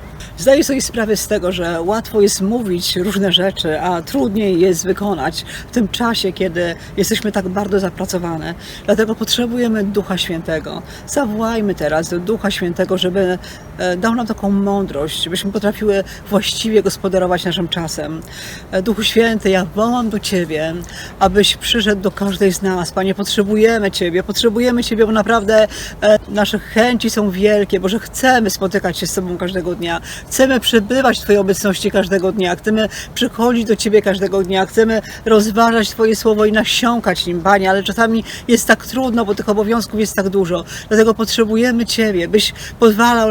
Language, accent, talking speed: Polish, native, 155 wpm